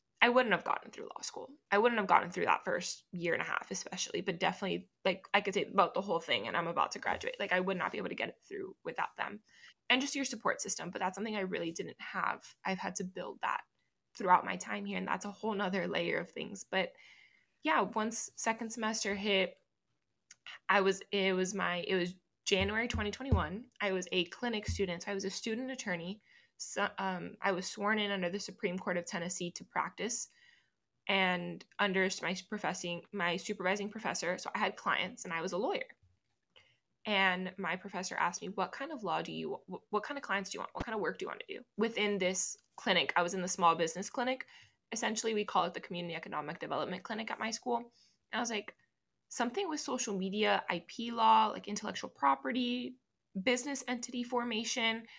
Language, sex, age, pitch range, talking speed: English, female, 20-39, 185-230 Hz, 215 wpm